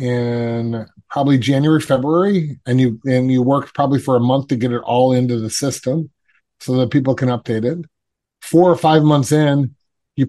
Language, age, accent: English, 30-49, American